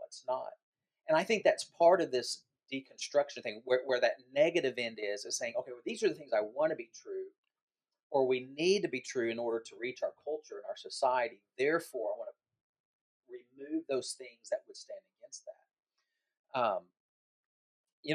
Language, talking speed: English, 195 wpm